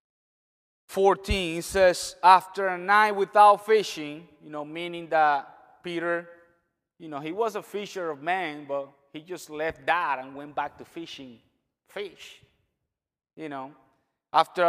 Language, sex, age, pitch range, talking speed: English, male, 30-49, 160-215 Hz, 140 wpm